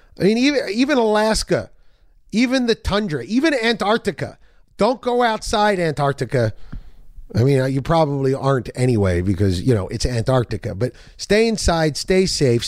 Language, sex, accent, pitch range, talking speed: English, male, American, 120-170 Hz, 140 wpm